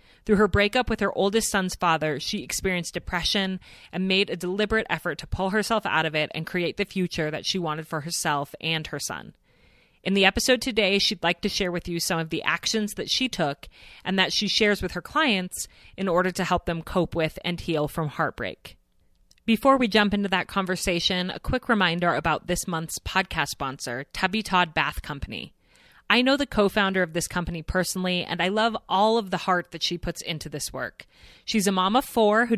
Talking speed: 210 wpm